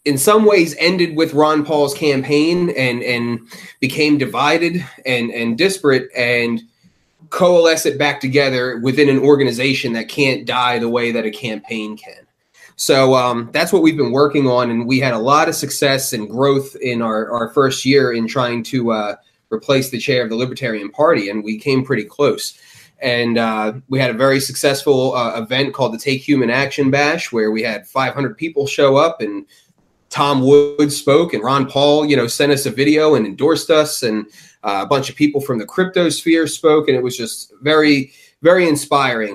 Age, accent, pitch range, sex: 30-49, American, 120-150 Hz, male